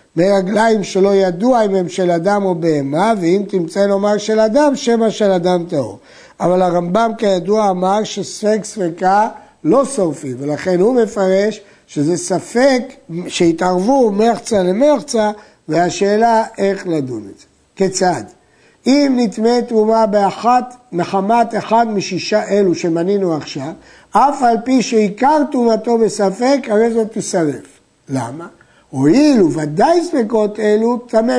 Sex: male